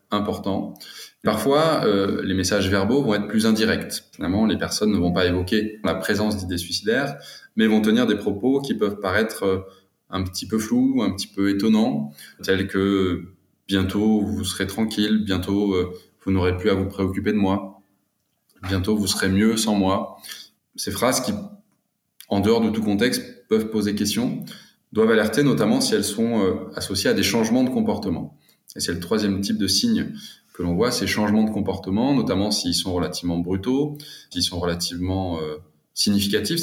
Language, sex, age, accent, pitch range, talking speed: French, male, 20-39, French, 95-110 Hz, 180 wpm